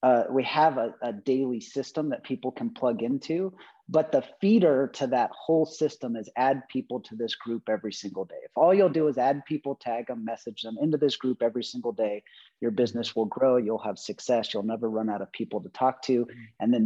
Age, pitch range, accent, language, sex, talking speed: 30-49, 120-160 Hz, American, English, male, 225 wpm